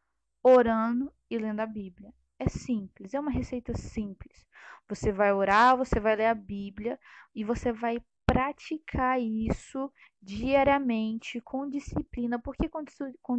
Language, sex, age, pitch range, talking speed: Portuguese, female, 10-29, 220-265 Hz, 140 wpm